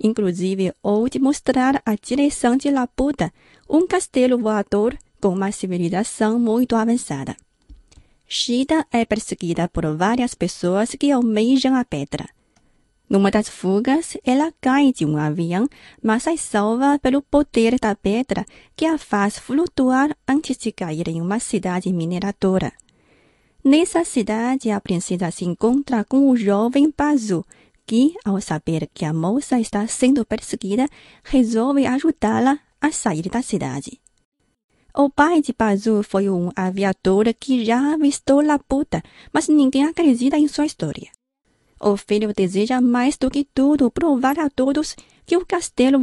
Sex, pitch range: female, 200-275 Hz